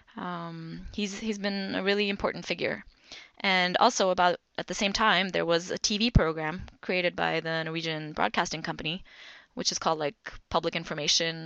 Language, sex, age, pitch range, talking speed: English, female, 20-39, 165-205 Hz, 170 wpm